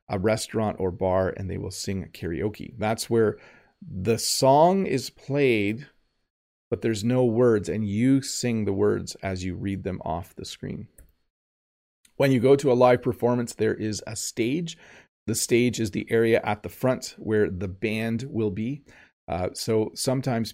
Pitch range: 100-125 Hz